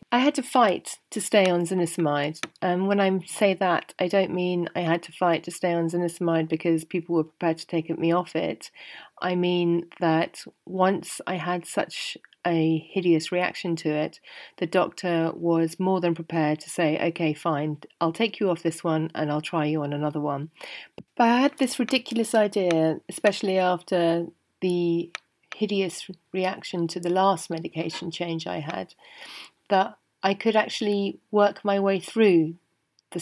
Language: English